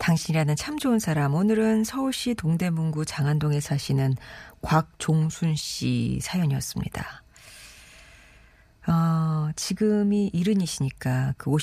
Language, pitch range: Korean, 145-205 Hz